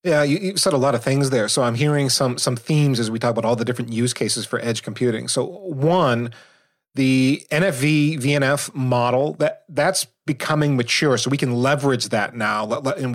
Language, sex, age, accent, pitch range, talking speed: English, male, 30-49, American, 115-145 Hz, 195 wpm